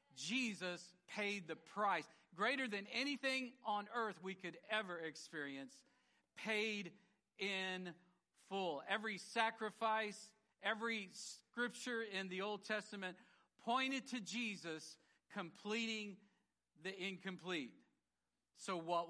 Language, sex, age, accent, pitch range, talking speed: English, male, 50-69, American, 155-210 Hz, 100 wpm